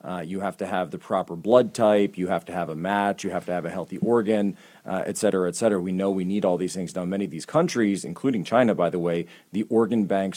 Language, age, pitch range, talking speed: English, 40-59, 95-115 Hz, 270 wpm